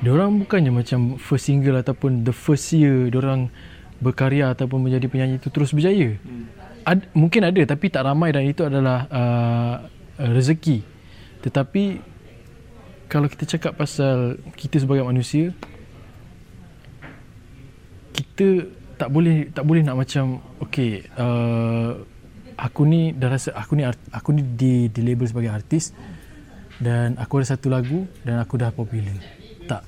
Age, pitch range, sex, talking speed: 20-39, 120-150 Hz, male, 145 wpm